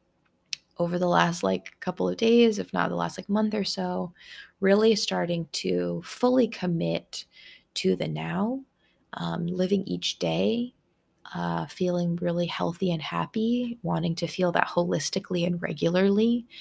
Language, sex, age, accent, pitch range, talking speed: English, female, 20-39, American, 140-195 Hz, 145 wpm